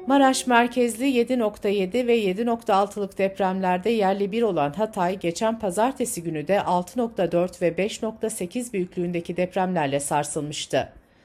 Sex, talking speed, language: female, 105 wpm, Turkish